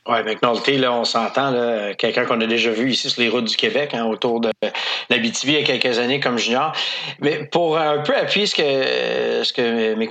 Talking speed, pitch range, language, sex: 230 wpm, 125-160 Hz, French, male